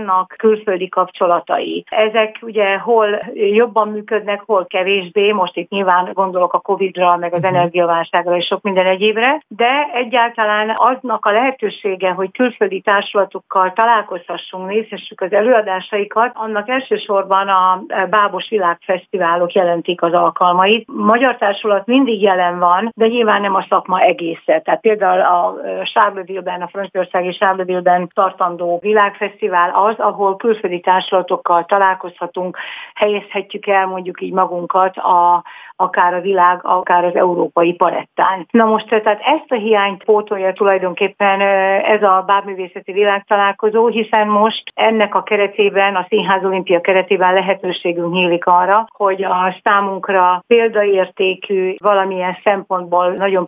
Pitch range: 180-210 Hz